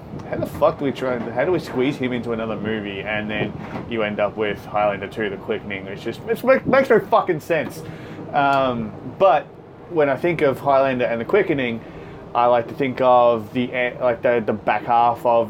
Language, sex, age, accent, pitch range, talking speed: English, male, 20-39, Australian, 110-135 Hz, 215 wpm